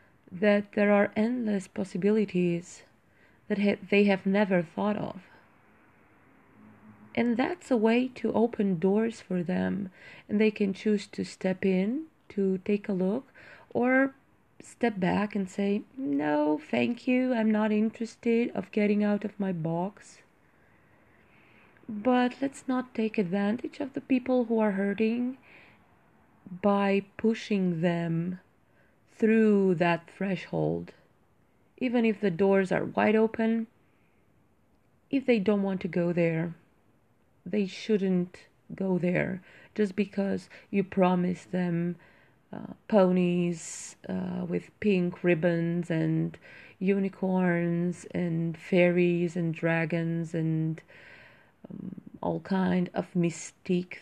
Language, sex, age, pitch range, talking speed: English, female, 30-49, 175-215 Hz, 120 wpm